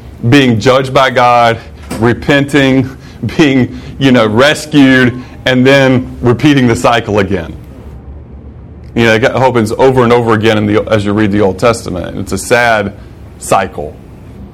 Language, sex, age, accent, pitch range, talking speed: English, male, 30-49, American, 110-135 Hz, 140 wpm